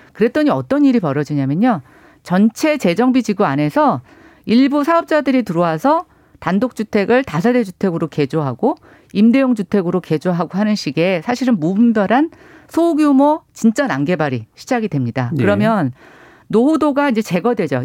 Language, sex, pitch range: Korean, female, 170-270 Hz